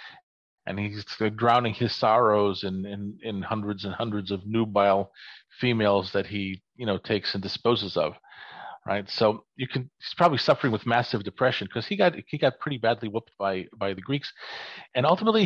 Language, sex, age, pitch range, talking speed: English, male, 40-59, 100-125 Hz, 180 wpm